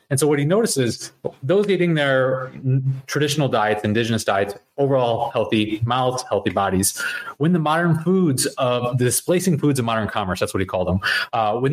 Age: 30-49